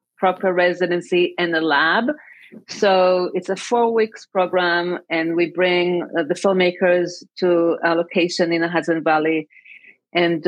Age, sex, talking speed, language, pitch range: 30-49, female, 135 wpm, English, 170-190 Hz